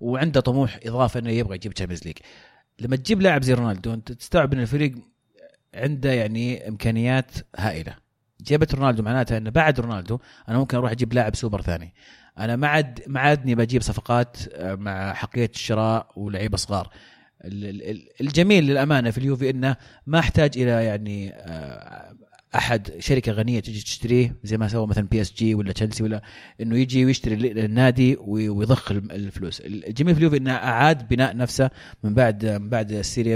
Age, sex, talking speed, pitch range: 30-49, male, 155 wpm, 110-135 Hz